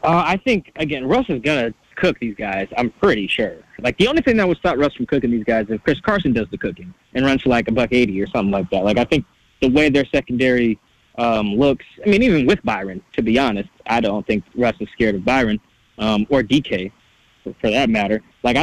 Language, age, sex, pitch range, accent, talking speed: English, 20-39, male, 120-160 Hz, American, 245 wpm